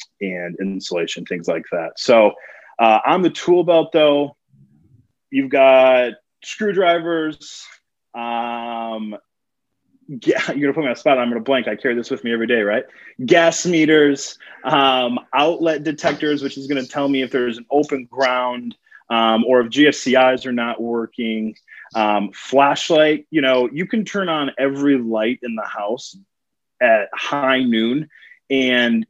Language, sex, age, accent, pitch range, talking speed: English, male, 20-39, American, 115-145 Hz, 155 wpm